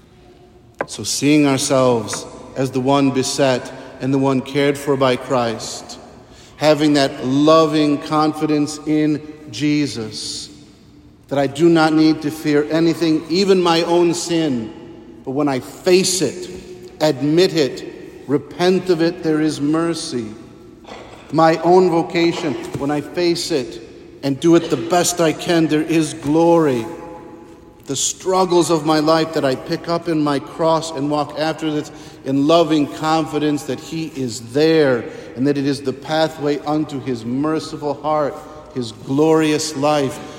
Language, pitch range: English, 130-155 Hz